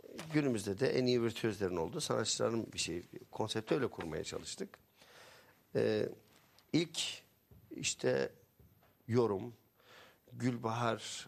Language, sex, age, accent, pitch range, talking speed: Turkish, male, 60-79, native, 100-130 Hz, 100 wpm